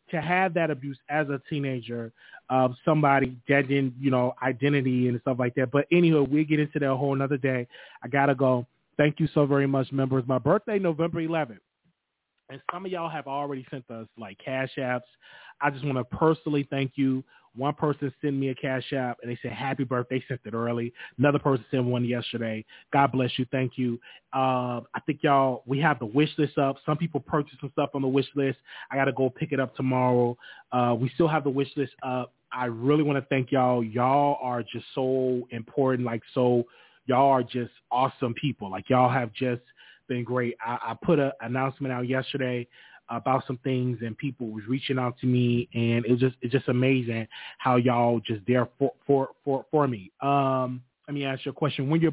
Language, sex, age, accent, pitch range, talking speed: English, male, 30-49, American, 125-145 Hz, 215 wpm